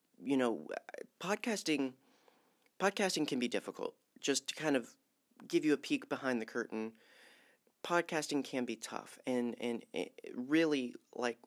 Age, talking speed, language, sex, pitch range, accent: 40-59, 135 wpm, English, male, 115-140 Hz, American